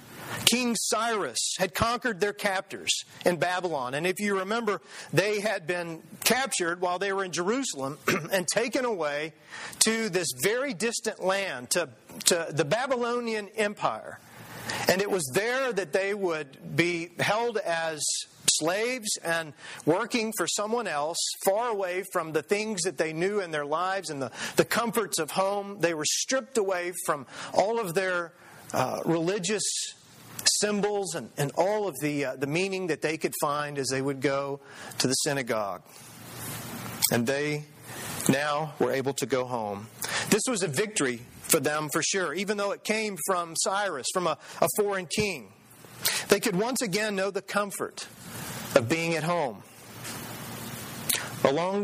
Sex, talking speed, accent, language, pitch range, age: male, 155 wpm, American, English, 150-205 Hz, 40-59